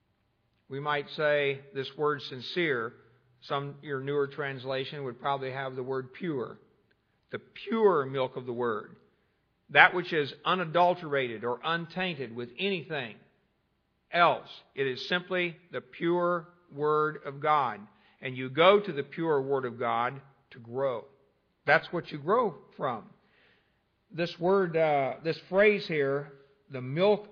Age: 50-69